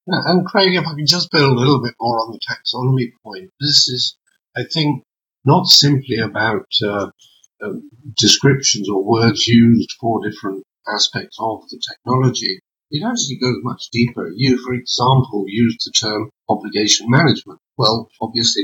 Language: English